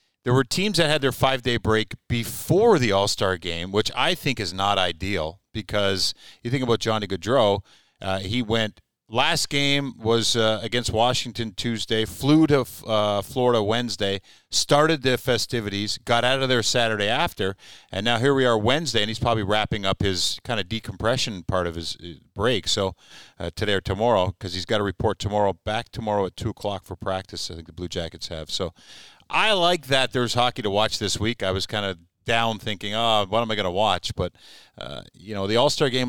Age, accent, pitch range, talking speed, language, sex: 40-59, American, 95-120 Hz, 200 wpm, English, male